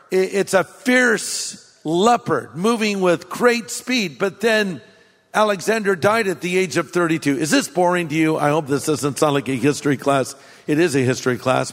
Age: 50-69